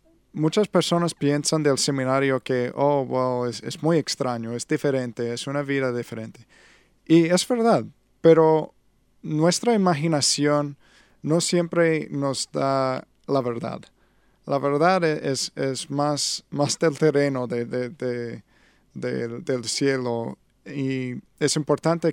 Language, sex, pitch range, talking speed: English, male, 130-155 Hz, 120 wpm